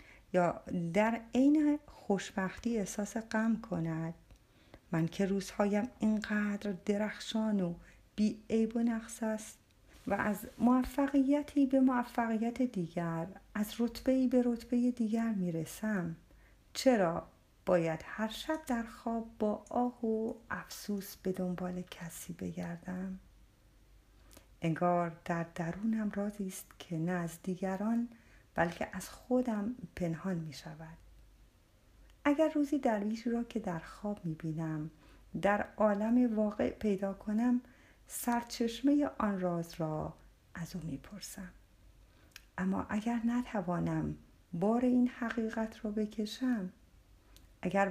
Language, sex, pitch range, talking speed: Persian, female, 165-225 Hz, 110 wpm